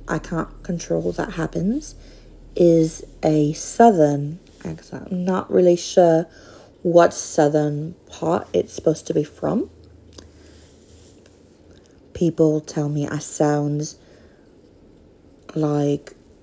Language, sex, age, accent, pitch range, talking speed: English, female, 30-49, British, 150-175 Hz, 100 wpm